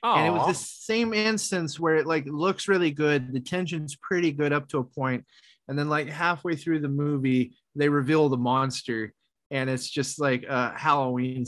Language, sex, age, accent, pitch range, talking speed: English, male, 30-49, American, 130-160 Hz, 195 wpm